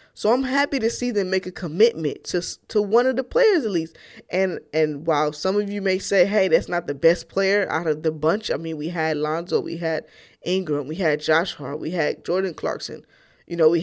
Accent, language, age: American, English, 20-39